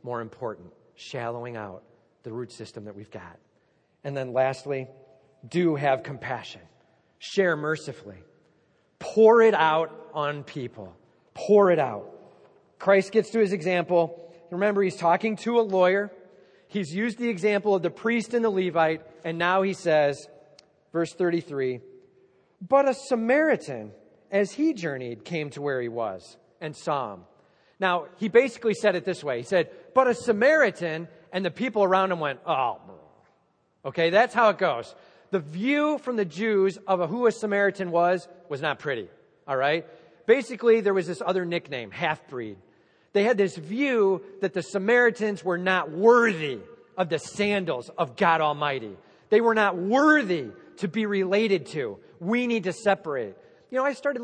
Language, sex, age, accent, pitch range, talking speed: English, male, 40-59, American, 150-220 Hz, 160 wpm